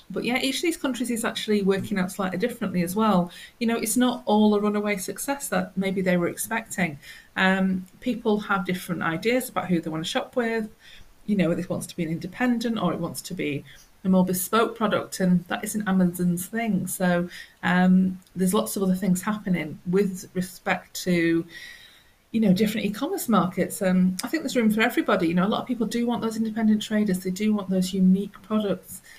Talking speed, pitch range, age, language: 210 wpm, 180-215 Hz, 30-49, English